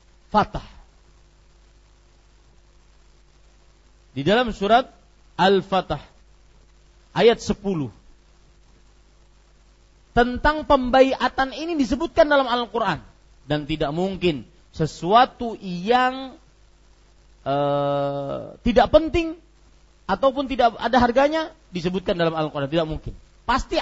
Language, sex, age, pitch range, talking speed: Malay, male, 40-59, 175-260 Hz, 80 wpm